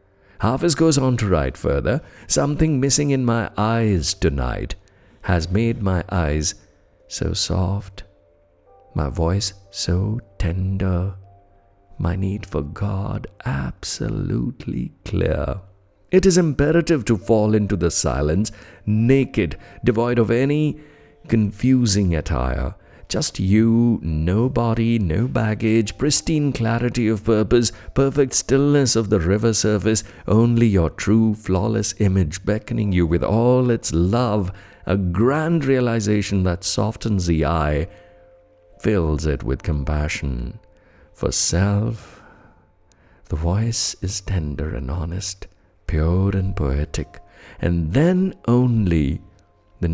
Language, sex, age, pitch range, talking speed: English, male, 50-69, 85-115 Hz, 115 wpm